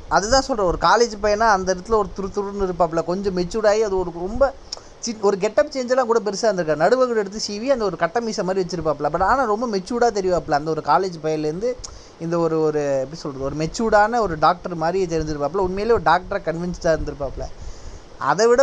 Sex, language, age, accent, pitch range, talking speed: male, Tamil, 20-39, native, 155-205 Hz, 175 wpm